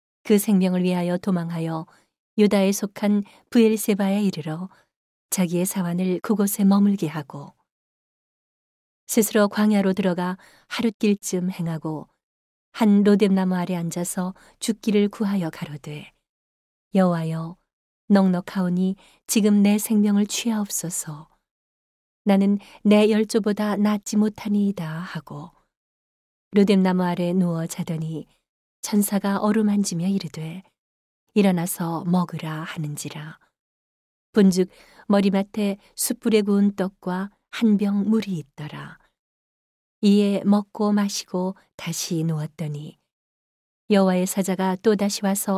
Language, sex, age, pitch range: Korean, female, 40-59, 170-205 Hz